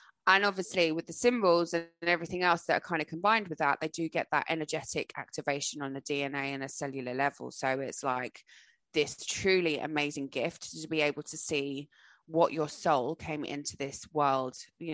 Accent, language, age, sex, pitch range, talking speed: British, English, 20-39, female, 145-170 Hz, 195 wpm